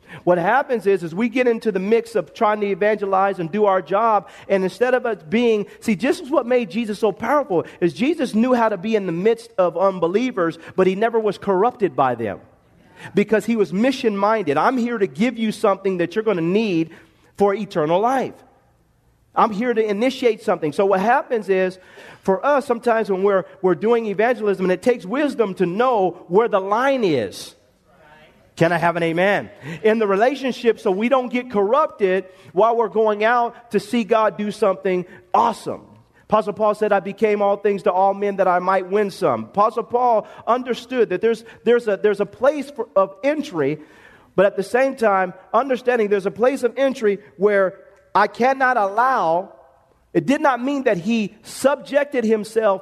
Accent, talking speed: American, 190 wpm